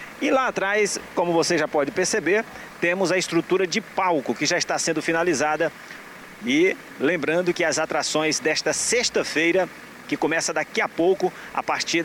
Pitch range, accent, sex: 150-190 Hz, Brazilian, male